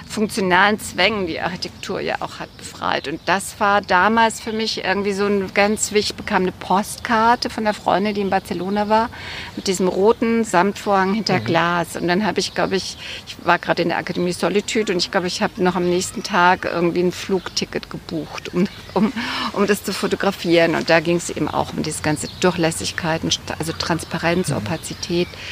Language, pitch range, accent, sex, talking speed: German, 170-205 Hz, German, female, 190 wpm